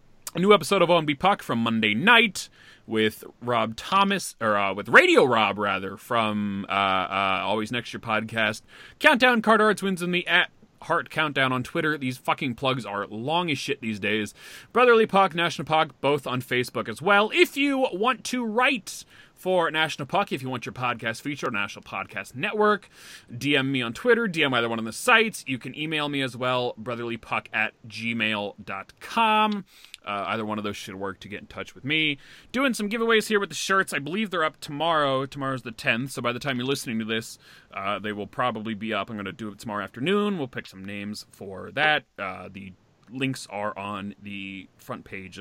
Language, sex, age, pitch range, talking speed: English, male, 30-49, 110-175 Hz, 205 wpm